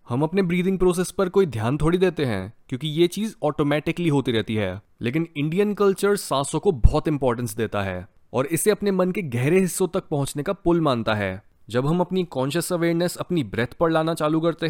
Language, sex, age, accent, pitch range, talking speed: Hindi, male, 20-39, native, 120-170 Hz, 205 wpm